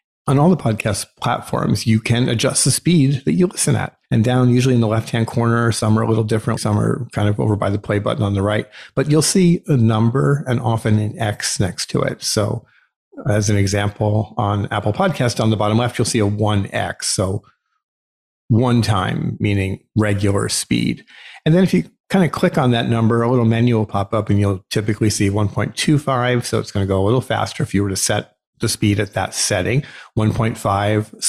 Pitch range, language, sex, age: 105-125 Hz, English, male, 40-59